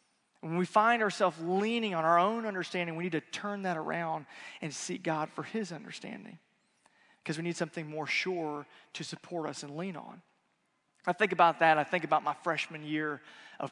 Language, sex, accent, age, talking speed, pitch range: English, male, American, 30-49, 190 wpm, 170-215 Hz